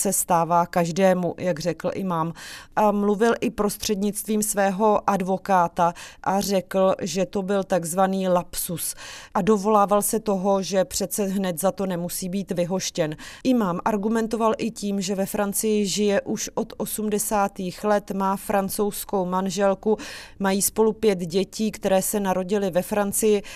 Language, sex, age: Czech, female, 30-49